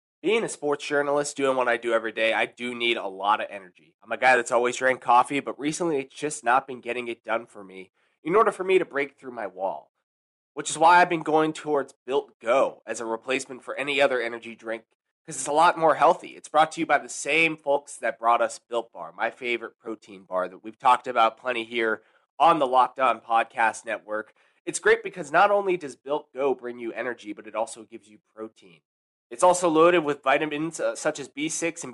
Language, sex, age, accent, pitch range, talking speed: English, male, 20-39, American, 115-155 Hz, 230 wpm